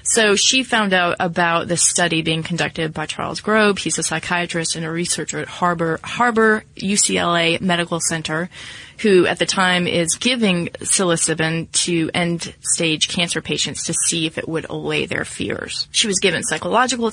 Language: English